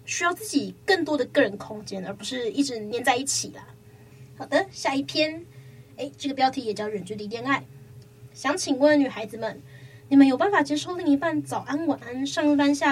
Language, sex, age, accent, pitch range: Chinese, female, 20-39, American, 230-295 Hz